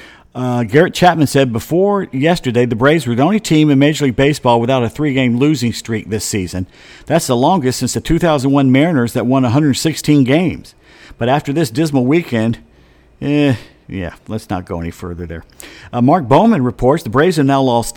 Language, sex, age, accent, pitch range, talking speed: English, male, 50-69, American, 115-155 Hz, 185 wpm